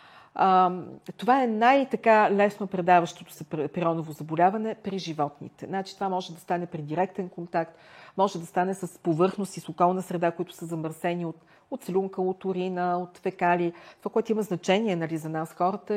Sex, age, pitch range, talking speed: female, 40-59, 165-205 Hz, 160 wpm